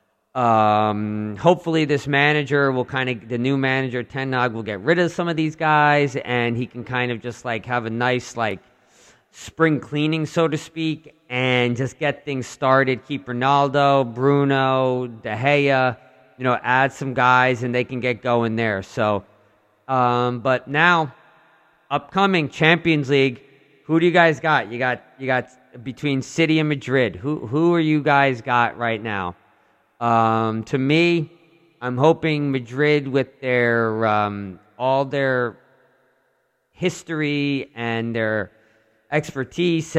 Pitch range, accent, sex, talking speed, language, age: 120-145 Hz, American, male, 150 wpm, English, 40-59